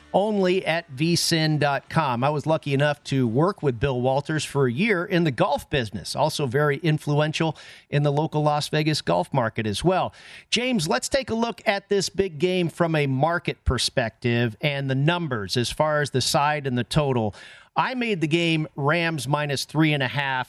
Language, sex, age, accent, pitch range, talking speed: English, male, 40-59, American, 135-165 Hz, 190 wpm